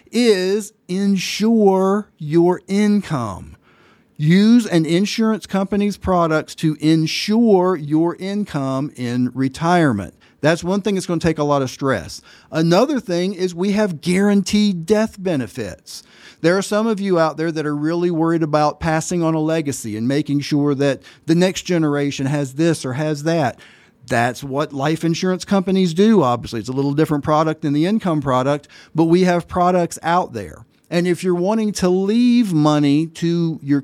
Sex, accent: male, American